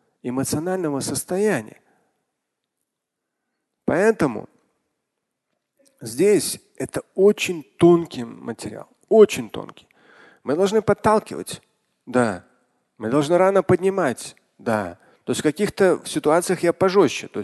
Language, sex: Russian, male